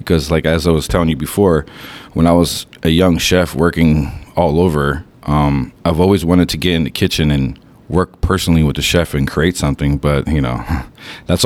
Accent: American